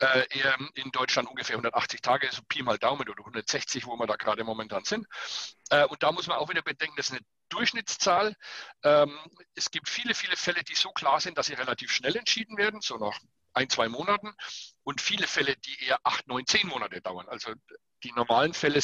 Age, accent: 60-79, German